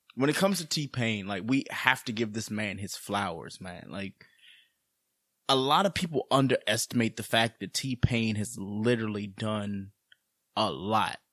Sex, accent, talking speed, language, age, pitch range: male, American, 160 wpm, English, 20-39, 135-225 Hz